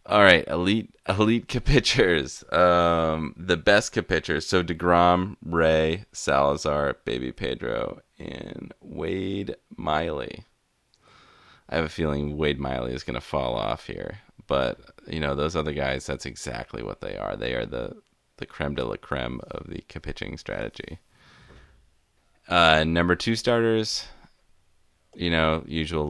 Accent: American